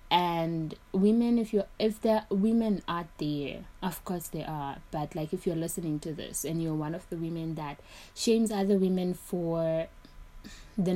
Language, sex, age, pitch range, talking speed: English, female, 20-39, 160-205 Hz, 180 wpm